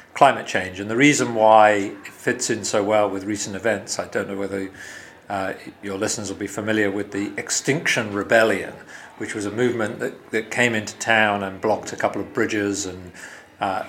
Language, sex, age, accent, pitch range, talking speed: English, male, 40-59, British, 100-115 Hz, 195 wpm